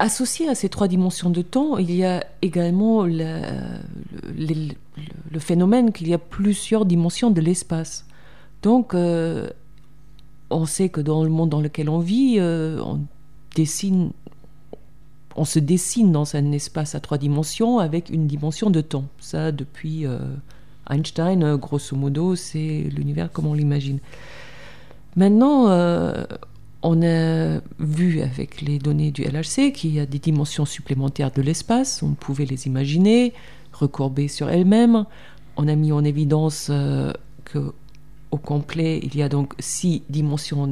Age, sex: 40-59, female